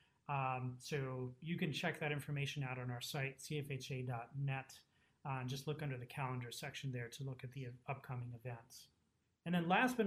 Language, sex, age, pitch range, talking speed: English, male, 30-49, 130-155 Hz, 180 wpm